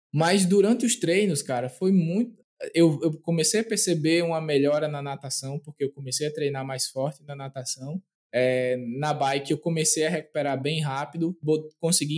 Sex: male